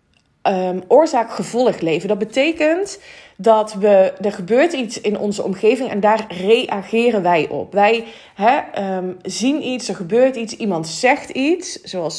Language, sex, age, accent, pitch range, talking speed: Dutch, female, 20-39, Dutch, 185-240 Hz, 150 wpm